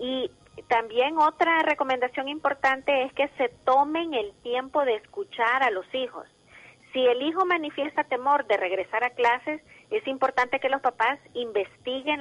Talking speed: 150 wpm